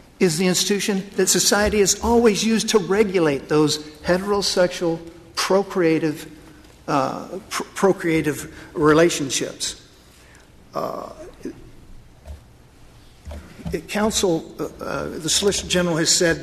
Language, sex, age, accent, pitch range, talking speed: English, male, 50-69, American, 150-185 Hz, 95 wpm